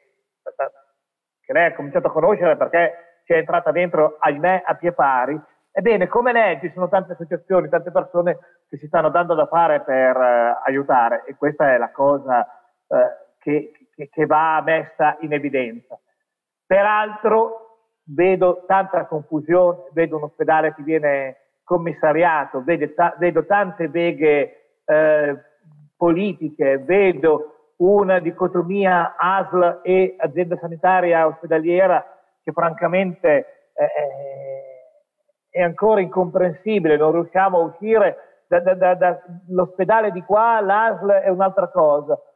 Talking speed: 130 wpm